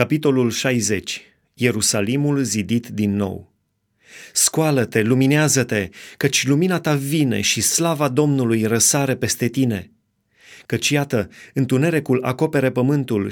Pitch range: 120-150 Hz